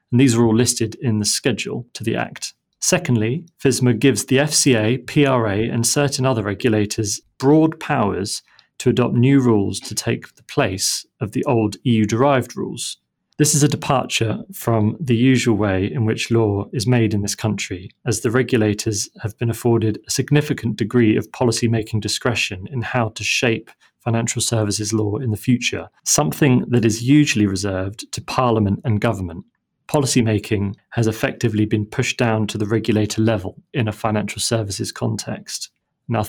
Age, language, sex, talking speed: 30-49, English, male, 165 wpm